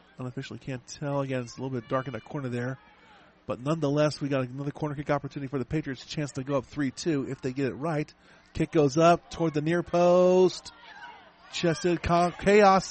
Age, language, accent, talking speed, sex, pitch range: 40-59, English, American, 205 wpm, male, 150-205 Hz